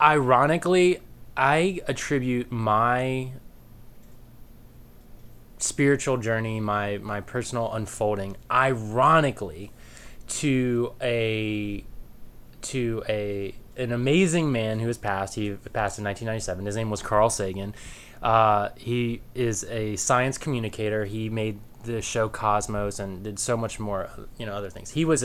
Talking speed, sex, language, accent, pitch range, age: 125 wpm, male, English, American, 105-130 Hz, 20-39